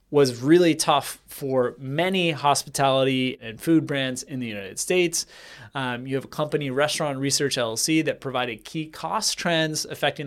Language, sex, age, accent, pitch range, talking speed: English, male, 30-49, American, 135-170 Hz, 160 wpm